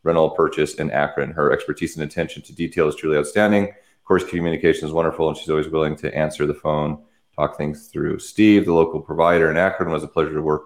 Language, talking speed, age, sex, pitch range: English, 225 wpm, 30-49, male, 75-95 Hz